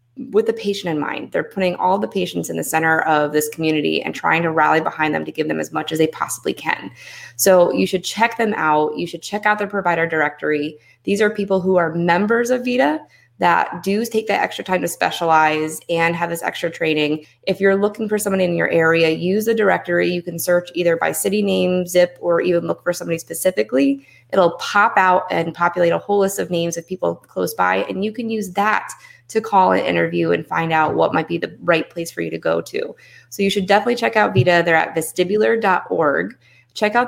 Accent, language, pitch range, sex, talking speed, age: American, English, 155-200 Hz, female, 225 wpm, 20-39